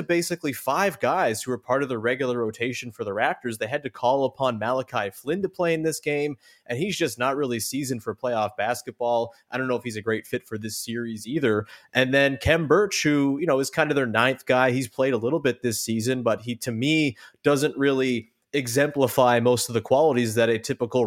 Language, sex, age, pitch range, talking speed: English, male, 20-39, 115-145 Hz, 230 wpm